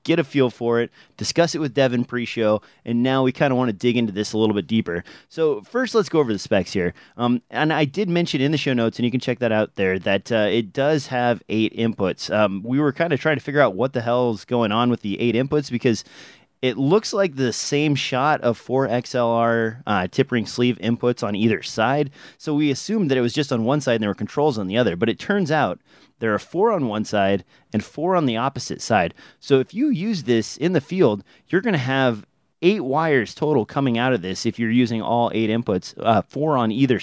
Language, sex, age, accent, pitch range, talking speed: English, male, 30-49, American, 115-150 Hz, 250 wpm